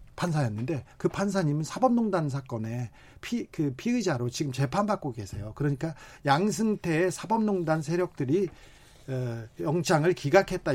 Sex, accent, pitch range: male, native, 130-190 Hz